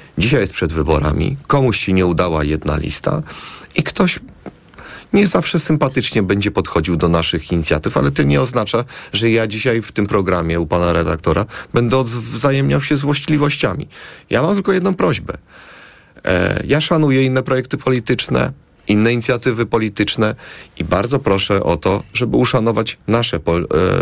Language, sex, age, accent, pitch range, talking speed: Polish, male, 30-49, native, 90-130 Hz, 145 wpm